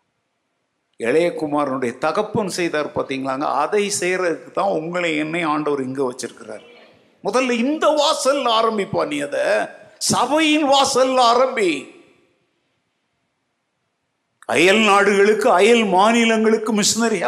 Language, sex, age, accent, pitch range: Tamil, male, 50-69, native, 215-280 Hz